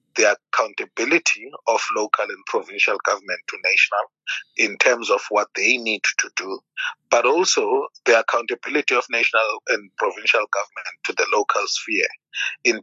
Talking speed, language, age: 145 wpm, English, 30-49